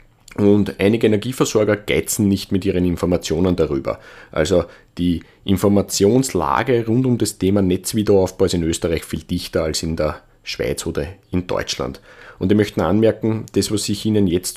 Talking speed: 155 wpm